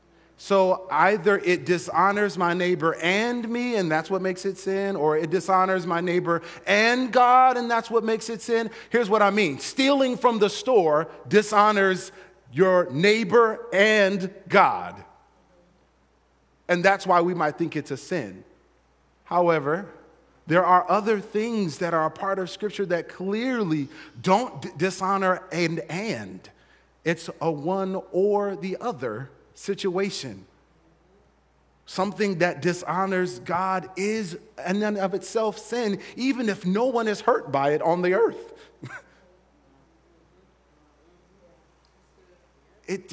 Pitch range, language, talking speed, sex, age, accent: 170-215 Hz, English, 135 wpm, male, 30-49, American